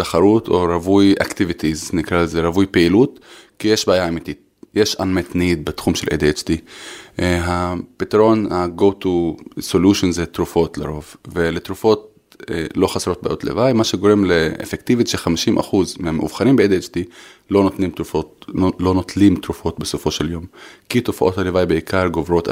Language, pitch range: Hebrew, 85-105 Hz